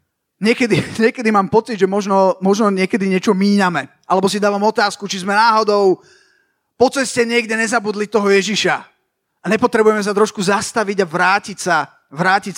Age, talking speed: 30-49, 155 wpm